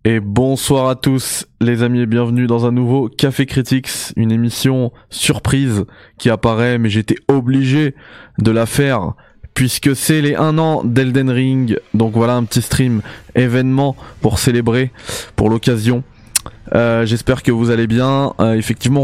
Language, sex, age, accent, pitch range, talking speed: French, male, 20-39, French, 110-130 Hz, 155 wpm